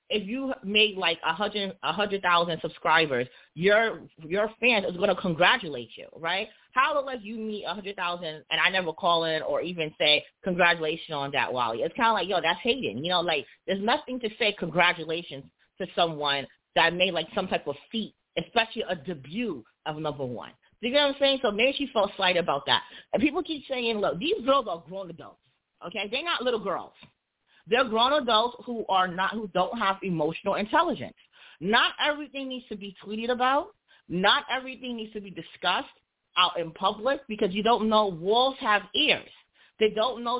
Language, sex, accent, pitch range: English, female, American, 180-255 Hz